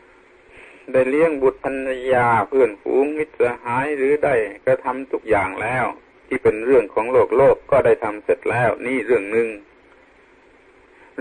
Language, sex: Thai, male